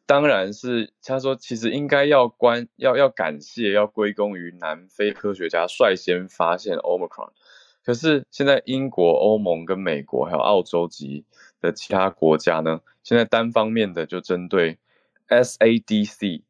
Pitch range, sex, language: 85-110 Hz, male, Chinese